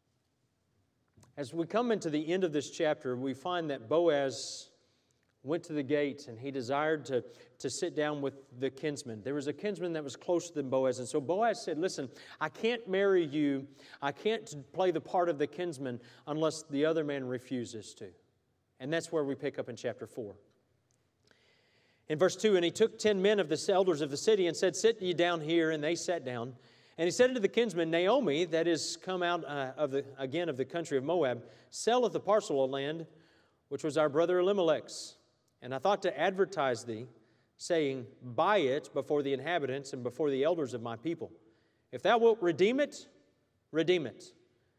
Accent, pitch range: American, 130-175 Hz